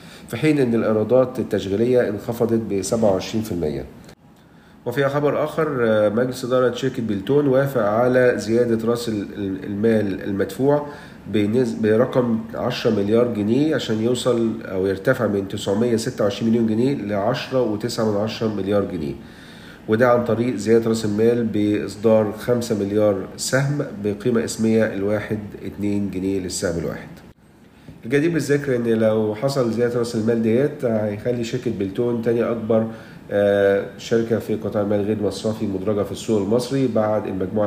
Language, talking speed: Arabic, 125 wpm